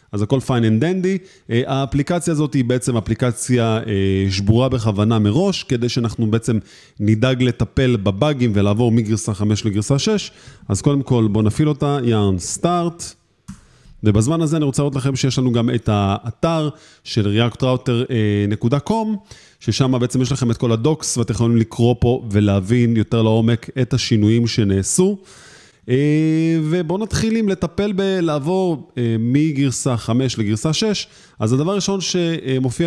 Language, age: Hebrew, 30-49